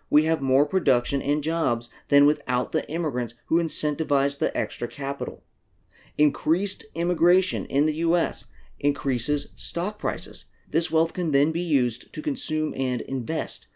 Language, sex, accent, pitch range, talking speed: English, male, American, 130-160 Hz, 145 wpm